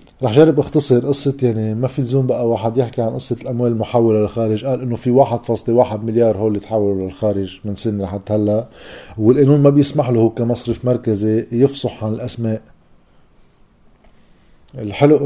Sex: male